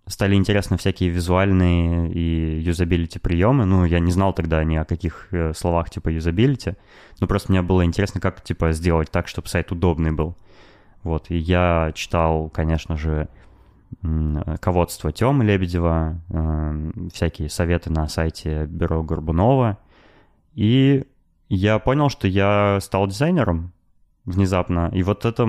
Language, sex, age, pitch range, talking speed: Russian, male, 20-39, 85-100 Hz, 135 wpm